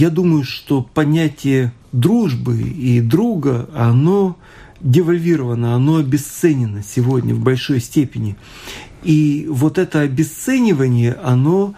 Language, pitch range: Russian, 130-170 Hz